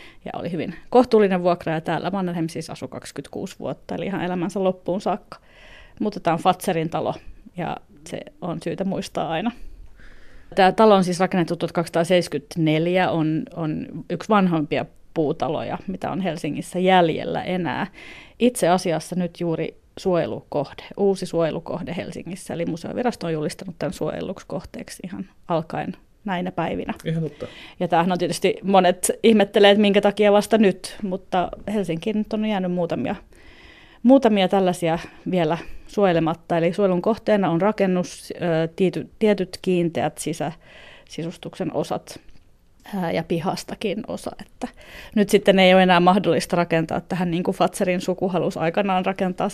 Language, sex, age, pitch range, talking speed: Finnish, female, 30-49, 170-195 Hz, 135 wpm